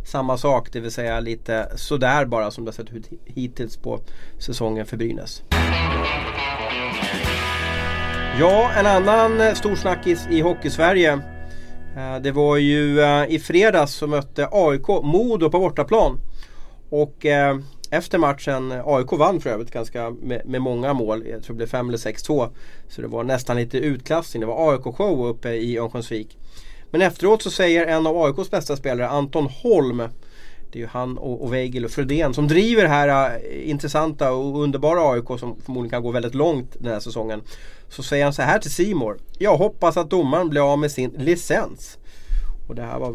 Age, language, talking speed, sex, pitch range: 30-49, Swedish, 165 wpm, male, 115-150 Hz